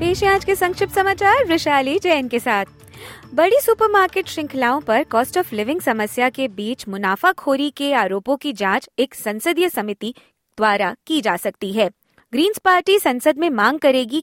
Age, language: 20-39, Hindi